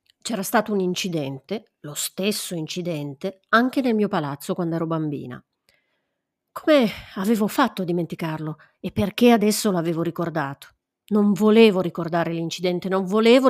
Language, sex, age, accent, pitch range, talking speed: Italian, female, 40-59, native, 160-215 Hz, 135 wpm